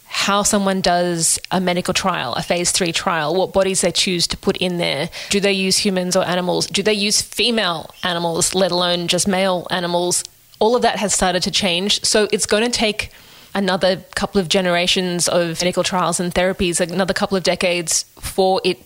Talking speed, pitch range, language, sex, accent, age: 195 wpm, 175-195 Hz, English, female, Australian, 20-39